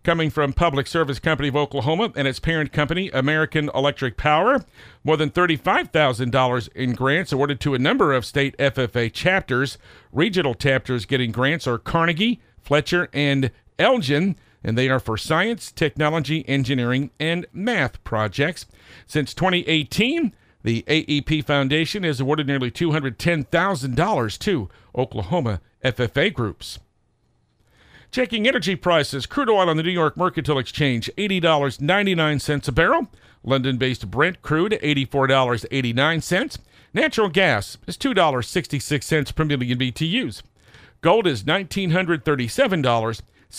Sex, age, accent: male, 50-69, American